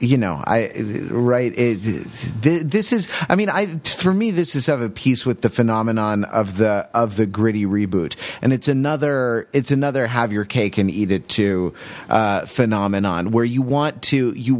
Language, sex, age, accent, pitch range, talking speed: English, male, 30-49, American, 105-135 Hz, 180 wpm